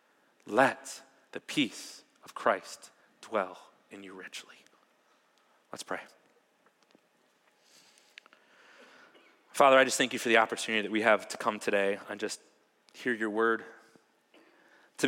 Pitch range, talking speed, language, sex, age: 115-135 Hz, 125 wpm, English, male, 30-49